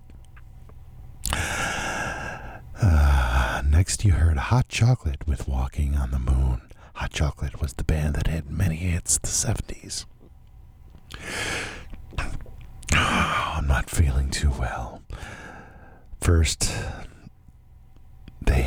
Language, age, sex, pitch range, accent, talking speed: English, 50-69, male, 70-95 Hz, American, 105 wpm